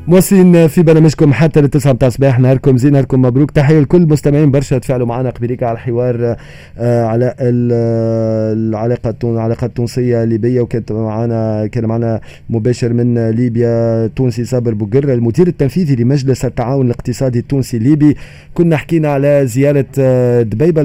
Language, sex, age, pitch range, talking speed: Arabic, male, 30-49, 110-130 Hz, 125 wpm